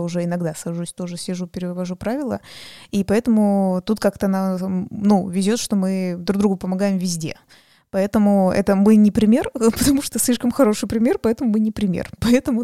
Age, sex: 20-39, female